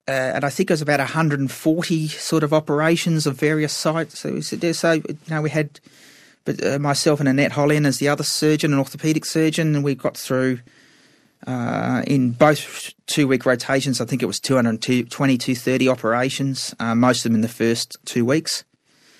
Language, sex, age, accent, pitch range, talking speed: English, male, 30-49, Australian, 130-155 Hz, 185 wpm